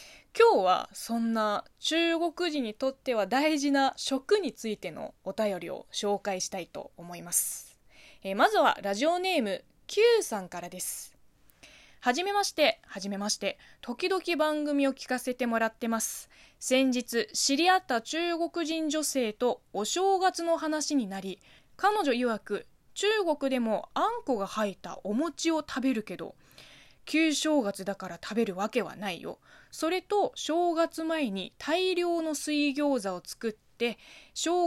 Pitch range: 215-320 Hz